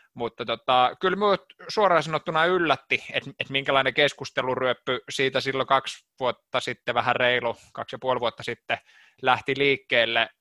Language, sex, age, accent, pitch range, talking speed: Finnish, male, 20-39, native, 115-130 Hz, 145 wpm